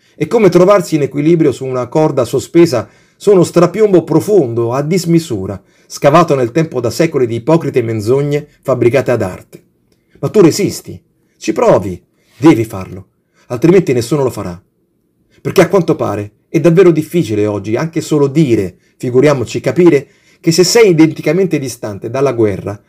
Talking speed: 150 wpm